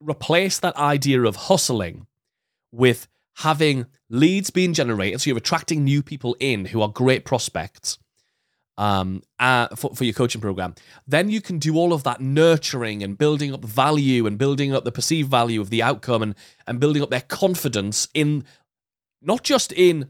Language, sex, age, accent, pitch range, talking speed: English, male, 30-49, British, 125-195 Hz, 175 wpm